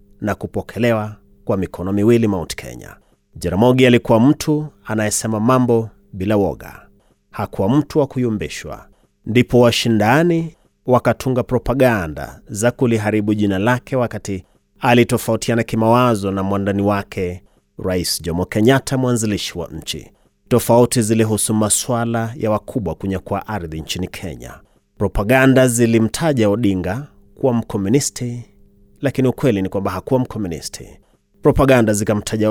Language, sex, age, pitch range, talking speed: Swahili, male, 30-49, 100-130 Hz, 110 wpm